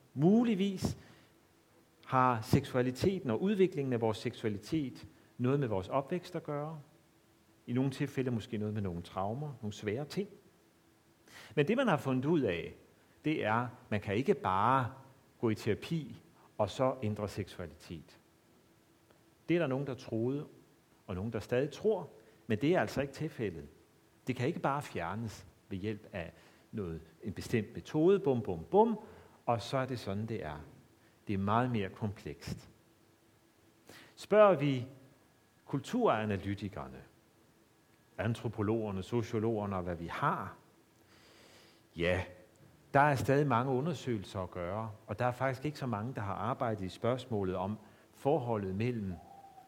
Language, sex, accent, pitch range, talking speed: Danish, male, native, 105-135 Hz, 145 wpm